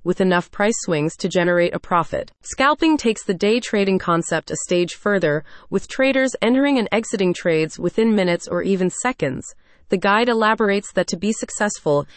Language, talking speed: English, 175 wpm